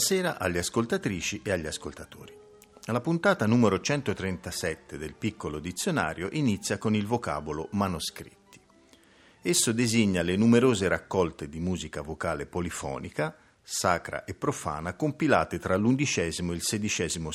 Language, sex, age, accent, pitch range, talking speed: Italian, male, 50-69, native, 85-120 Hz, 125 wpm